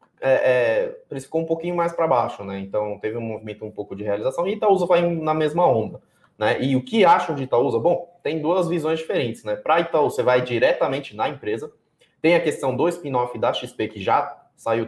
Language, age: Portuguese, 20-39